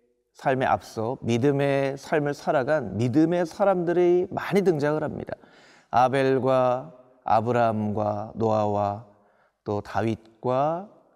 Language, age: Korean, 40-59